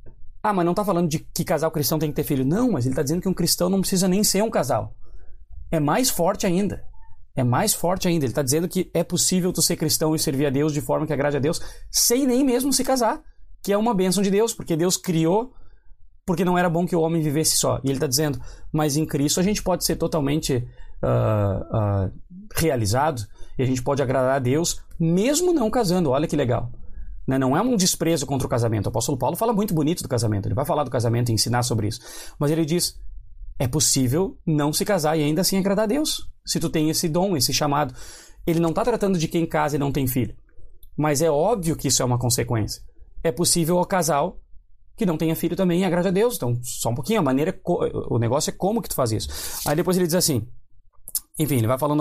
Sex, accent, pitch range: male, Brazilian, 130-180 Hz